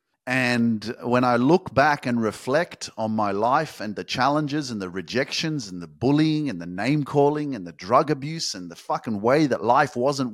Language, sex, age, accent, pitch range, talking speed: English, male, 30-49, Australian, 150-215 Hz, 190 wpm